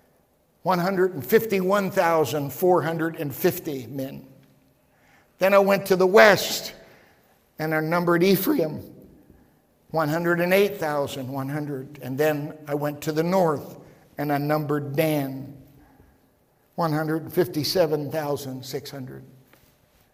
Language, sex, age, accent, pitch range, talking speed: English, male, 60-79, American, 145-200 Hz, 75 wpm